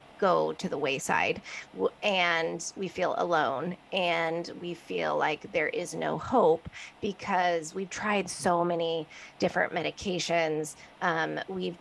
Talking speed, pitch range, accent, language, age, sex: 125 wpm, 165-225 Hz, American, English, 20-39, female